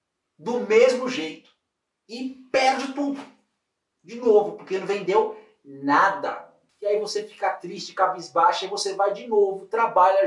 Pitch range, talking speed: 190-270 Hz, 140 wpm